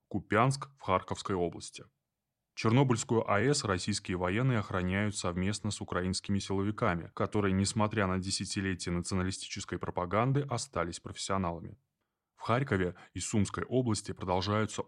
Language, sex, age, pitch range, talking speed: Russian, male, 20-39, 95-110 Hz, 110 wpm